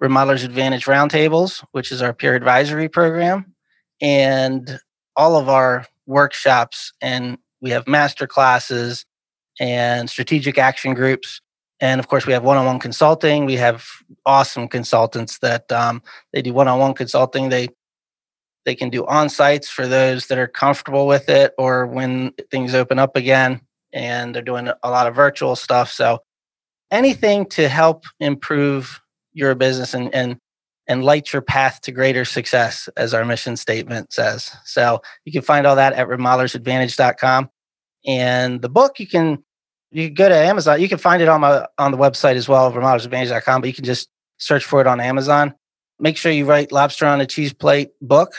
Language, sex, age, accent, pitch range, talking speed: English, male, 30-49, American, 125-145 Hz, 165 wpm